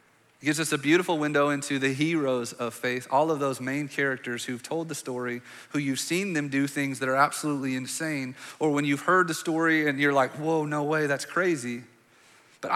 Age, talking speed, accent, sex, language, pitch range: 30-49, 210 wpm, American, male, English, 135-180 Hz